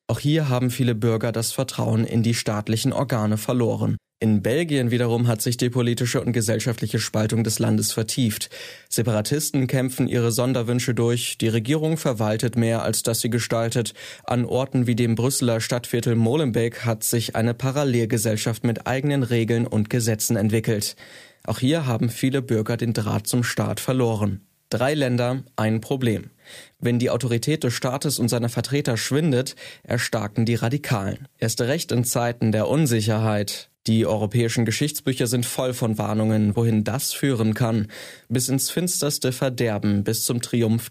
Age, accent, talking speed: 20-39, German, 155 wpm